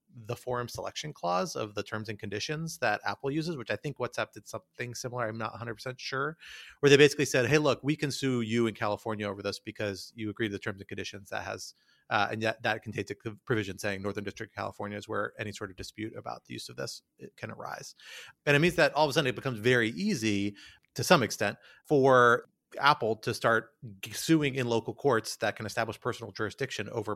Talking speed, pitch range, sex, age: 230 wpm, 110-135 Hz, male, 30-49